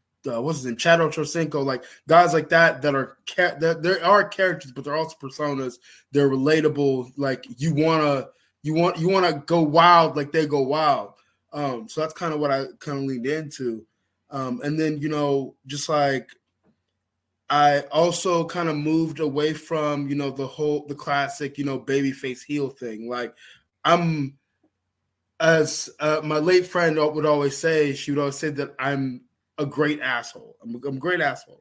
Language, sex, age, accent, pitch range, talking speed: English, male, 20-39, American, 135-160 Hz, 185 wpm